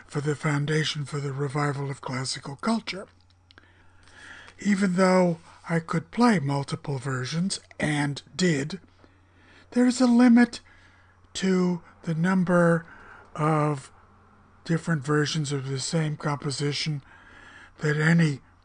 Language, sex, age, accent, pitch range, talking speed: English, male, 60-79, American, 125-180 Hz, 110 wpm